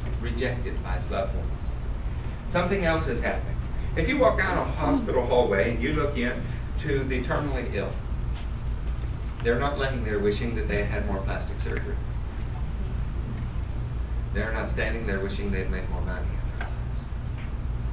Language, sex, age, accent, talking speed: English, male, 50-69, American, 160 wpm